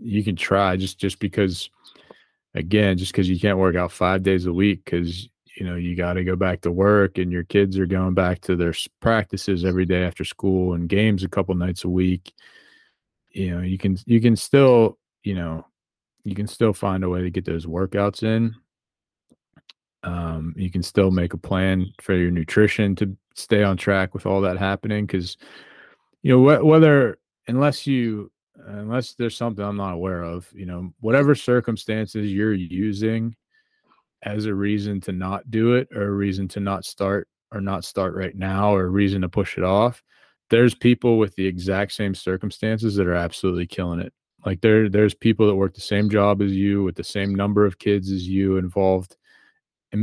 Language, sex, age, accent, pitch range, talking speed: English, male, 20-39, American, 90-110 Hz, 190 wpm